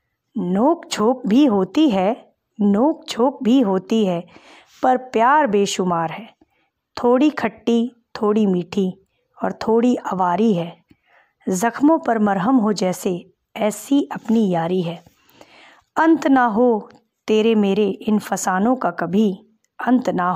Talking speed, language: 125 wpm, Hindi